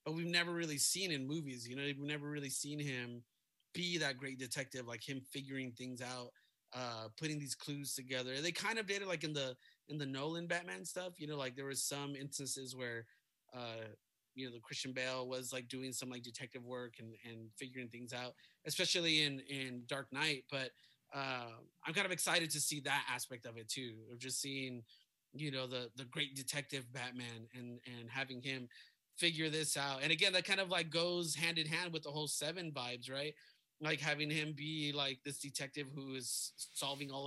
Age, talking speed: 30-49, 210 wpm